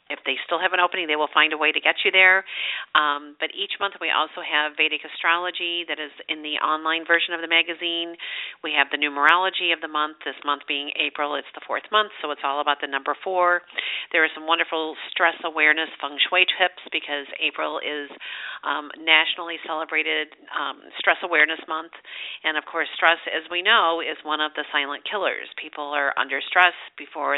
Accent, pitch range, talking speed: American, 150-175 Hz, 200 wpm